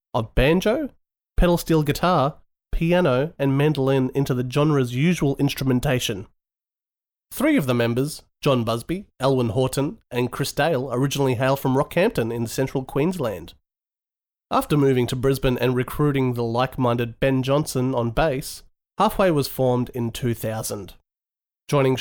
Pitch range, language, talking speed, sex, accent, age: 120-150 Hz, English, 135 wpm, male, Australian, 30-49